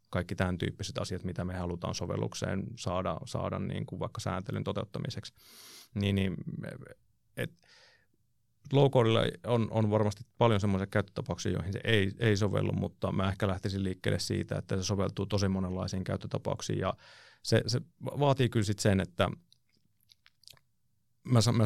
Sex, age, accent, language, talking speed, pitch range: male, 30-49, native, Finnish, 140 wpm, 95-110 Hz